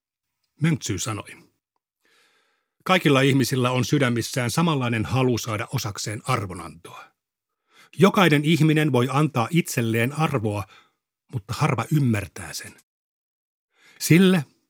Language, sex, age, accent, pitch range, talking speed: Finnish, male, 60-79, native, 110-140 Hz, 90 wpm